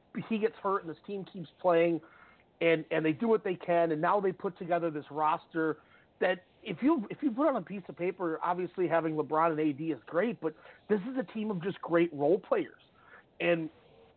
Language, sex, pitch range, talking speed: English, male, 165-205 Hz, 215 wpm